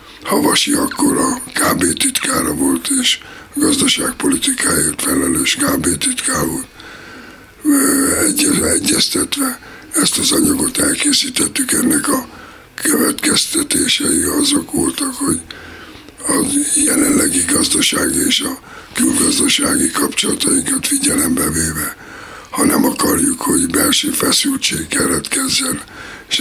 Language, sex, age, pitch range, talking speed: Hungarian, male, 60-79, 270-295 Hz, 95 wpm